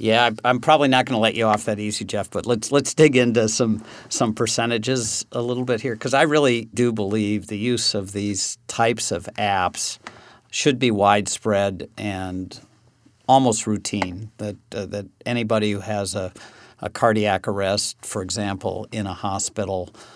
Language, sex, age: English, male, 50-69